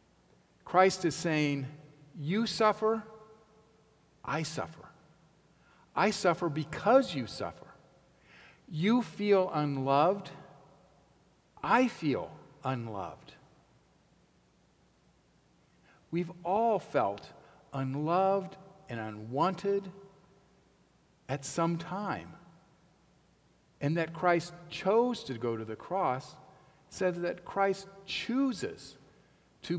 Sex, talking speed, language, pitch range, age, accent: male, 85 wpm, English, 145-195 Hz, 50-69, American